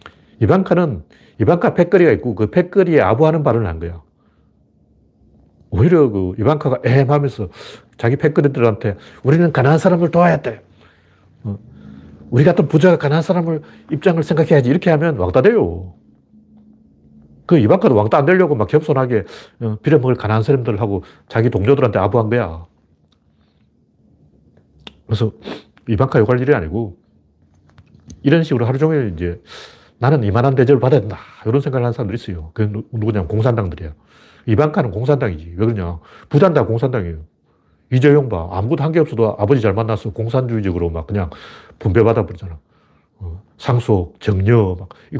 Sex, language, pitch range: male, Korean, 95-145 Hz